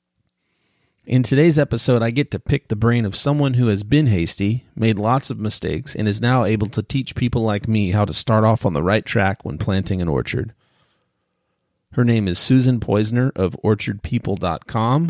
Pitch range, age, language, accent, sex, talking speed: 100-125 Hz, 30-49, English, American, male, 185 wpm